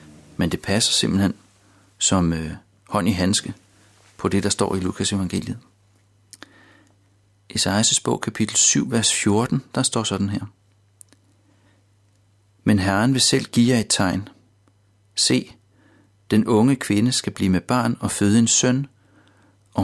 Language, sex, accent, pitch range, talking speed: Danish, male, native, 100-110 Hz, 140 wpm